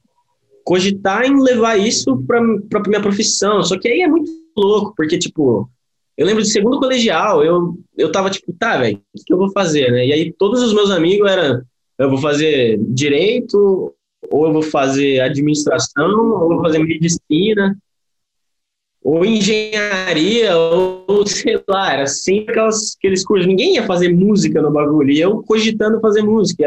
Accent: Brazilian